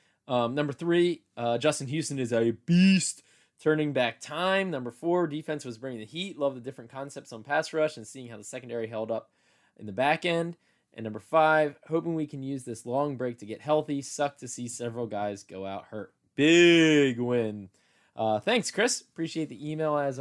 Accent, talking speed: American, 200 wpm